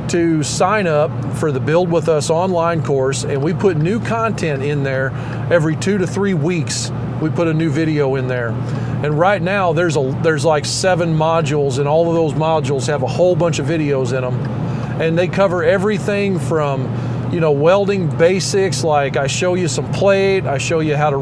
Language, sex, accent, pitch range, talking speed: English, male, American, 145-175 Hz, 200 wpm